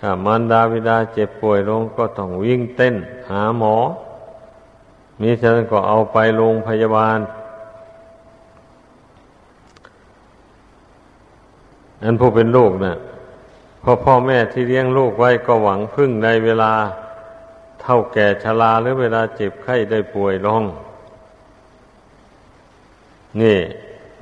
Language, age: Thai, 60-79